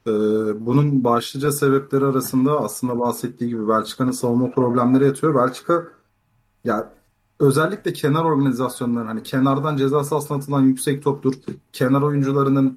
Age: 30-49